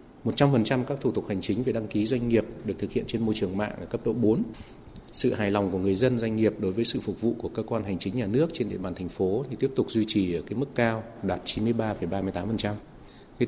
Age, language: 20-39, Vietnamese